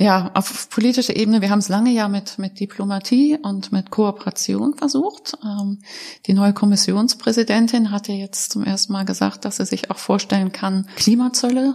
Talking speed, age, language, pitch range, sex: 170 wpm, 30-49, German, 190-230 Hz, female